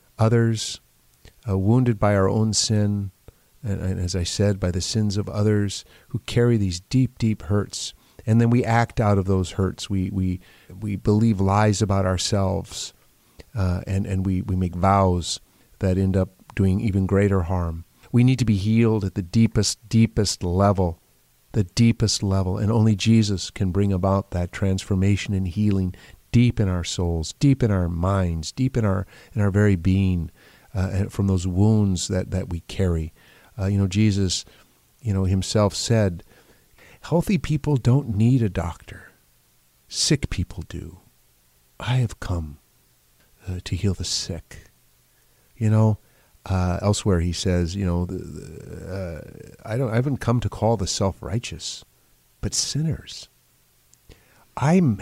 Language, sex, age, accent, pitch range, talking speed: English, male, 40-59, American, 90-110 Hz, 160 wpm